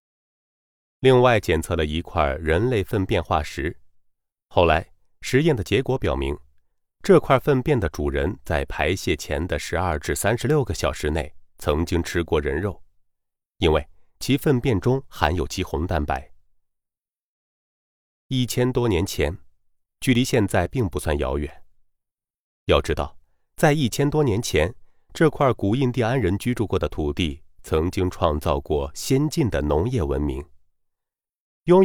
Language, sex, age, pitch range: Chinese, male, 30-49, 75-125 Hz